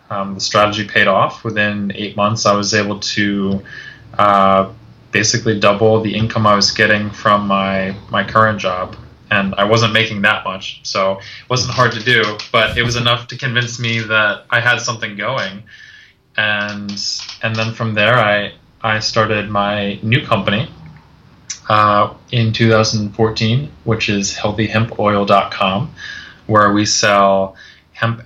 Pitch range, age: 100-110 Hz, 20-39